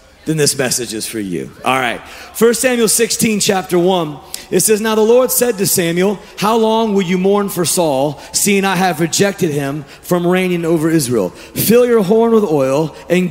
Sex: male